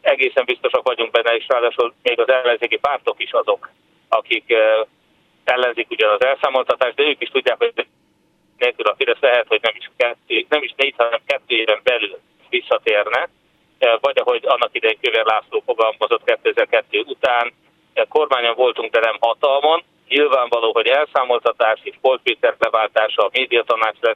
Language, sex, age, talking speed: Hungarian, male, 30-49, 140 wpm